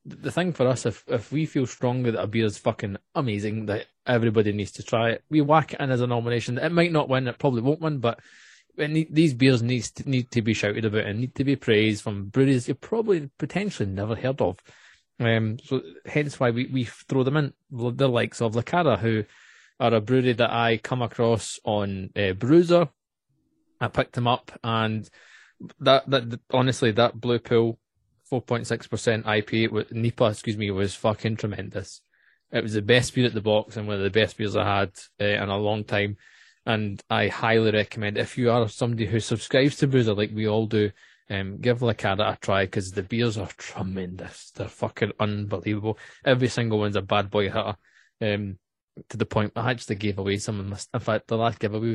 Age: 20-39